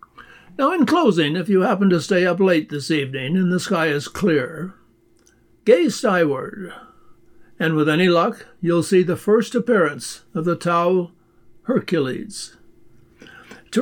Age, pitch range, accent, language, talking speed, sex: 60-79, 155-200 Hz, American, English, 145 wpm, male